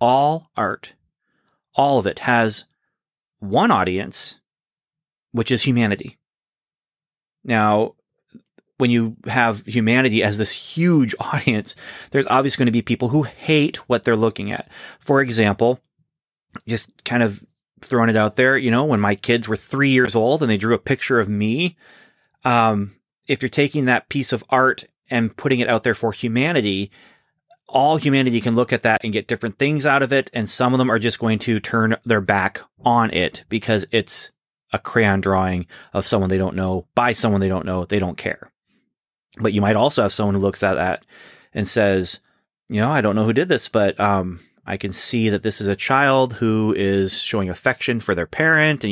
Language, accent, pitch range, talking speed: English, American, 105-130 Hz, 190 wpm